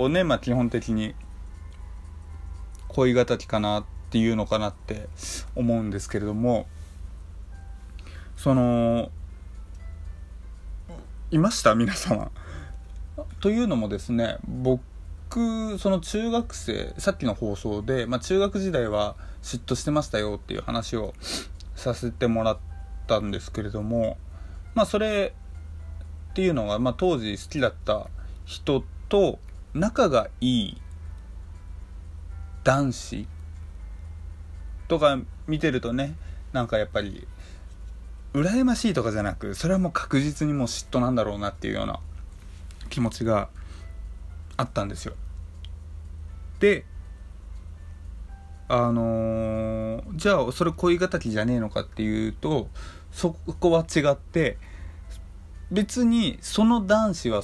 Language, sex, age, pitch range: Japanese, male, 20-39, 80-125 Hz